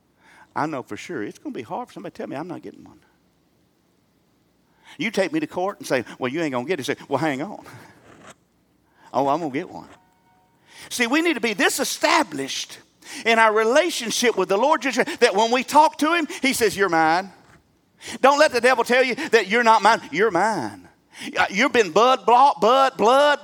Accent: American